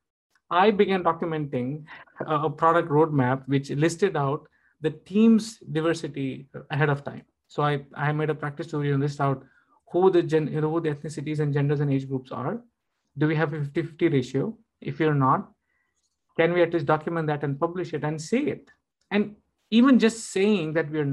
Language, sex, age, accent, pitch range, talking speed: English, male, 50-69, Indian, 145-165 Hz, 180 wpm